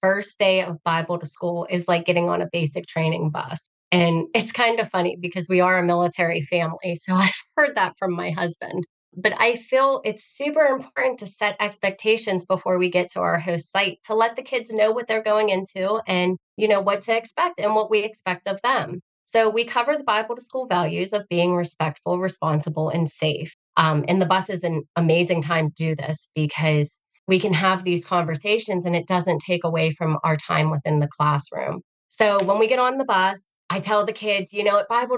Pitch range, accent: 170-210 Hz, American